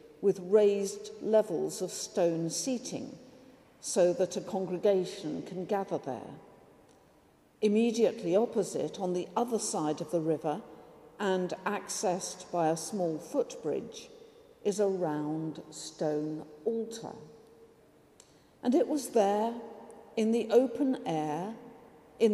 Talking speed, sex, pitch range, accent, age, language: 115 wpm, female, 170-215 Hz, British, 50-69, English